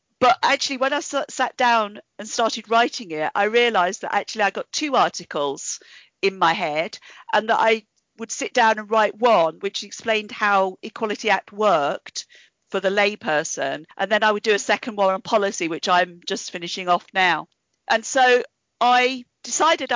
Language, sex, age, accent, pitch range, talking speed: English, female, 50-69, British, 195-245 Hz, 175 wpm